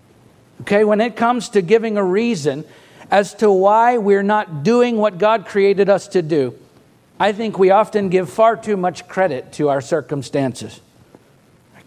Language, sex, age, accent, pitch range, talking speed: English, male, 50-69, American, 190-225 Hz, 165 wpm